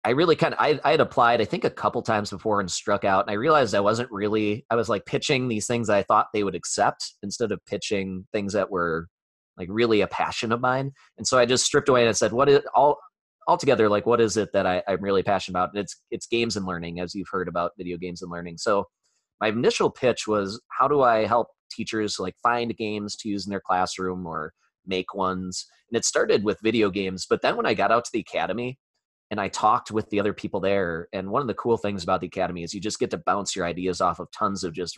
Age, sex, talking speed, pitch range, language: 20-39, male, 255 wpm, 90-115 Hz, English